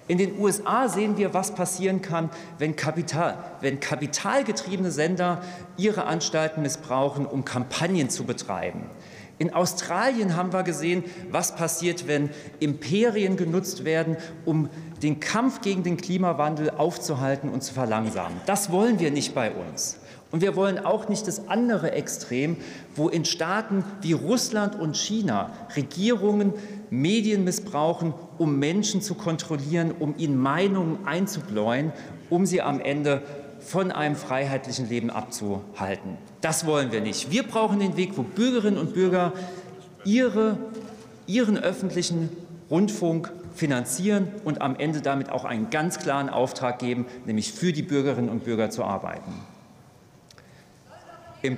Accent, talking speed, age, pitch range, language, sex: German, 135 wpm, 40-59, 145-195 Hz, German, male